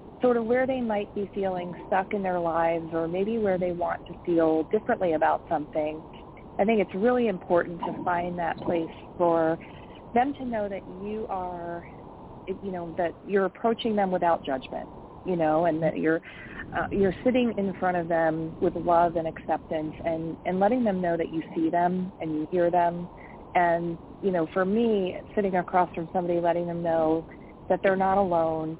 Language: English